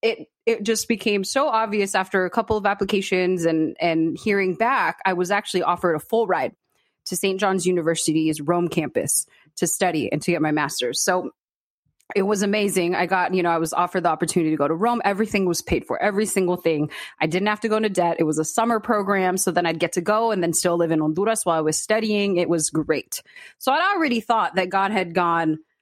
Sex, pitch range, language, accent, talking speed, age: female, 170-215 Hz, English, American, 230 wpm, 30-49